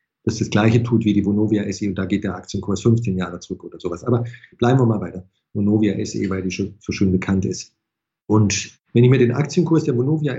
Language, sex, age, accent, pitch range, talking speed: German, male, 50-69, German, 105-130 Hz, 245 wpm